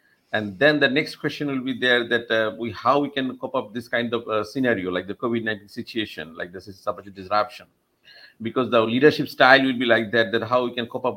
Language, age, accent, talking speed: English, 50-69, Indian, 230 wpm